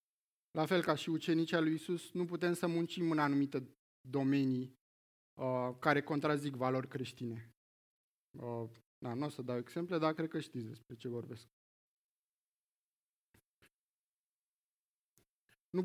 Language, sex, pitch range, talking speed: Romanian, male, 125-165 Hz, 130 wpm